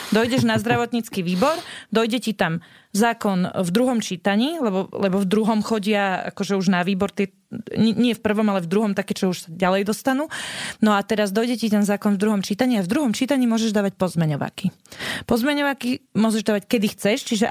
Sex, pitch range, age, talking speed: female, 195-235 Hz, 30-49, 190 wpm